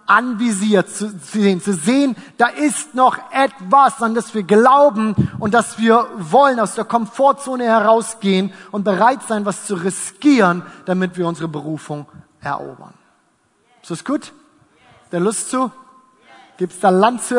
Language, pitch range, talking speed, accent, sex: German, 175-240 Hz, 150 wpm, German, male